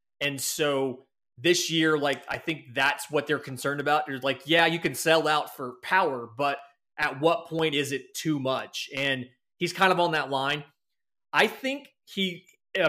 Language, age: English, 30-49